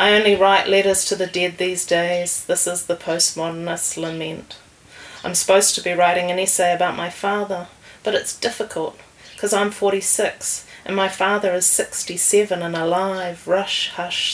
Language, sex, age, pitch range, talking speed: English, female, 30-49, 175-195 Hz, 165 wpm